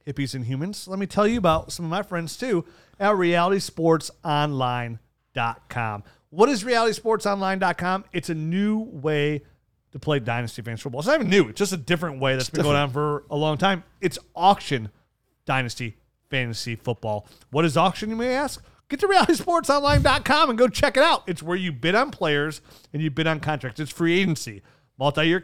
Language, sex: English, male